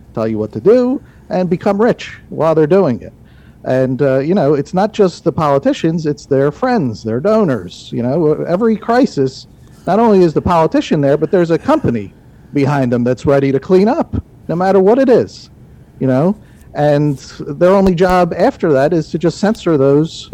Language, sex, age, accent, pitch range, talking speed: English, male, 50-69, American, 135-190 Hz, 190 wpm